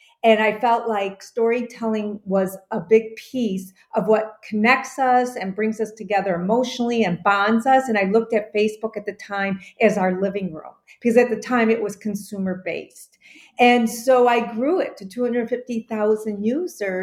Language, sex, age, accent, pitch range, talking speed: English, female, 40-59, American, 195-230 Hz, 170 wpm